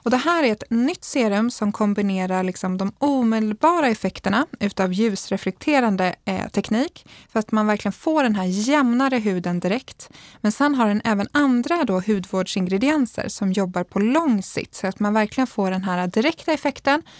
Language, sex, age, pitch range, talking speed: Swedish, female, 20-39, 195-265 Hz, 160 wpm